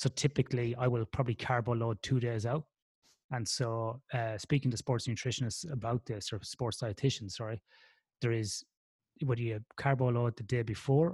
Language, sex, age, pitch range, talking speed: English, male, 30-49, 110-125 Hz, 160 wpm